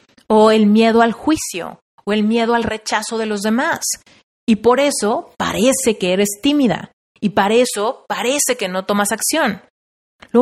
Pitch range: 205-280 Hz